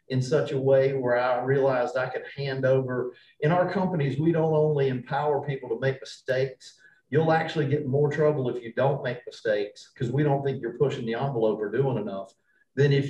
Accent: American